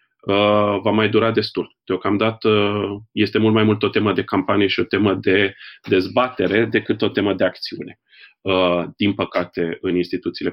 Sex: male